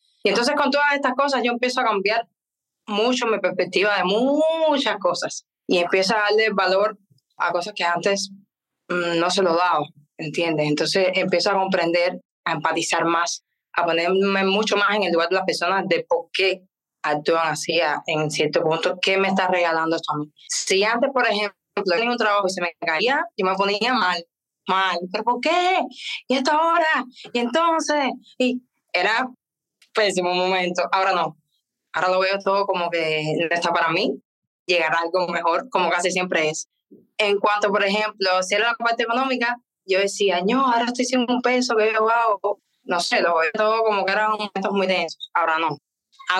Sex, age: female, 20-39